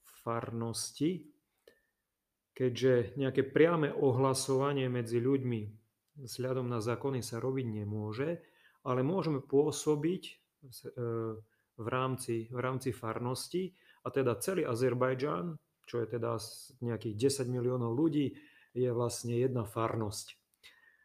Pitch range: 120-135 Hz